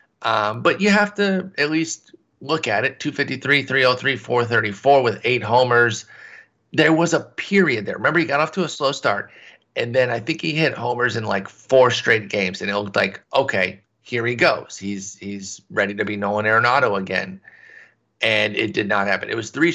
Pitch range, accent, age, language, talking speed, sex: 105-135 Hz, American, 30-49, English, 200 wpm, male